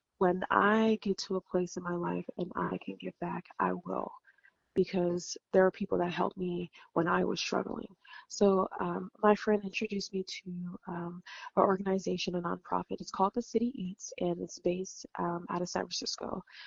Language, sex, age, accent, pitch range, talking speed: English, female, 20-39, American, 175-200 Hz, 185 wpm